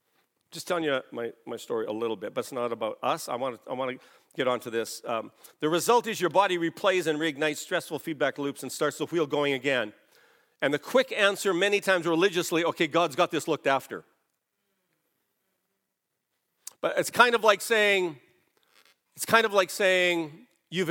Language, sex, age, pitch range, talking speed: English, male, 50-69, 150-225 Hz, 185 wpm